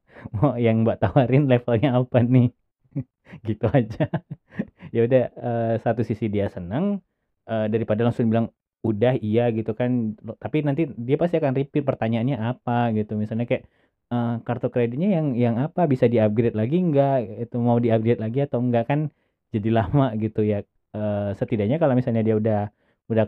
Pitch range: 105-125 Hz